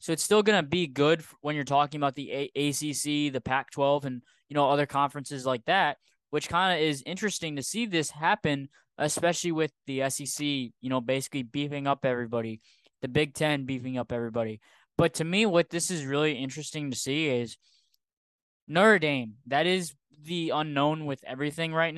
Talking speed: 185 wpm